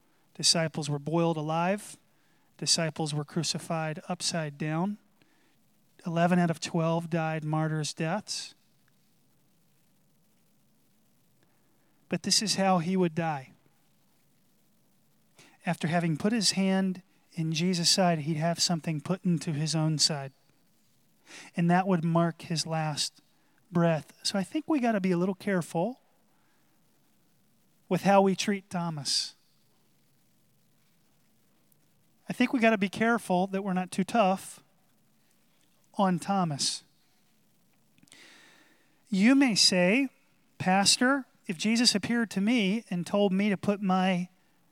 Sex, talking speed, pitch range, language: male, 120 wpm, 170-200 Hz, English